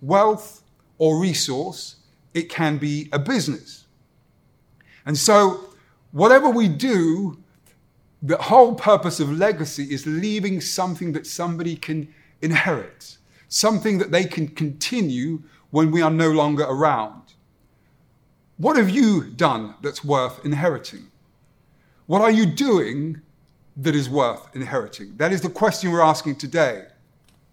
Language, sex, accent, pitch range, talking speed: English, male, British, 150-195 Hz, 125 wpm